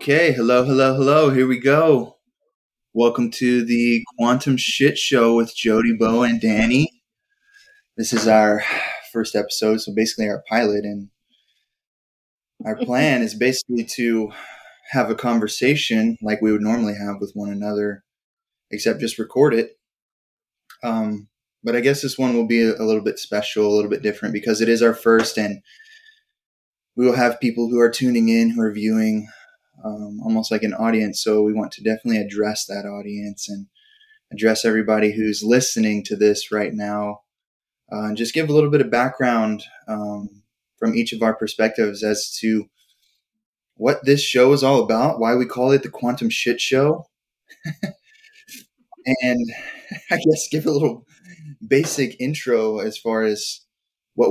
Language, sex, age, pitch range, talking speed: English, male, 20-39, 110-135 Hz, 160 wpm